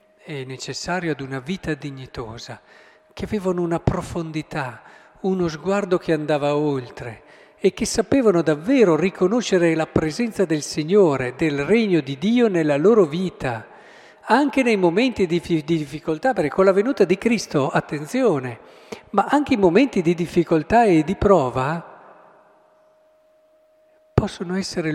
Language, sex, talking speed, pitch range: Italian, male, 130 wpm, 140-205 Hz